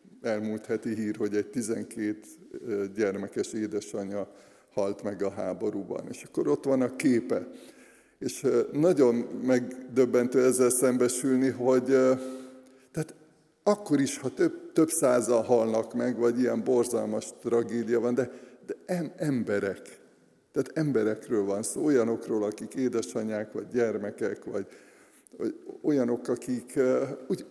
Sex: male